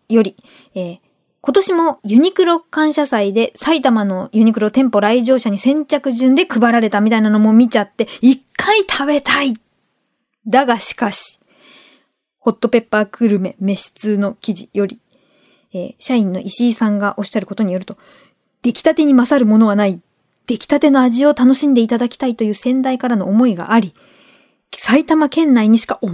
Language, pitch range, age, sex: Japanese, 220-275 Hz, 20-39, female